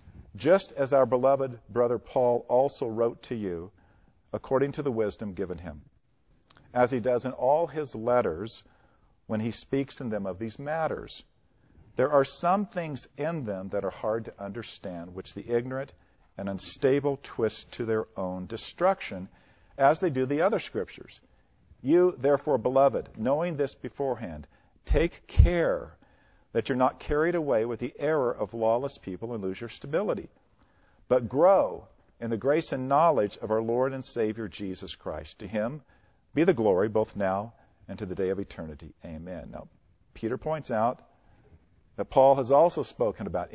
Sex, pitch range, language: male, 100-140 Hz, English